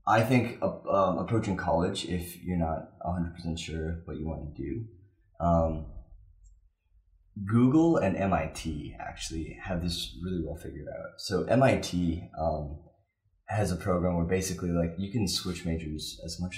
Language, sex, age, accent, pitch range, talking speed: English, male, 20-39, American, 80-100 Hz, 150 wpm